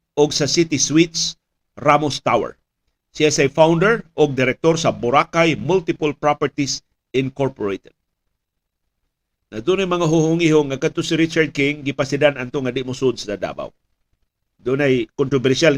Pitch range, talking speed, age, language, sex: 130-165 Hz, 135 wpm, 50-69, Filipino, male